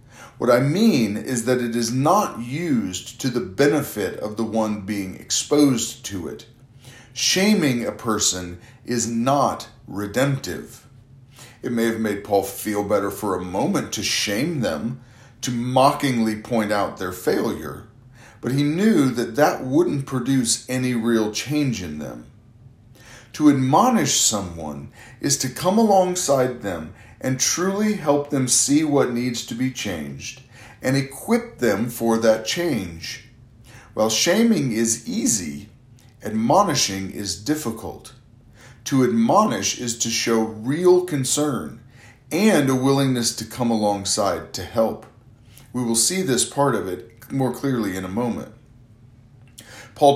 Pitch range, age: 110-135 Hz, 40-59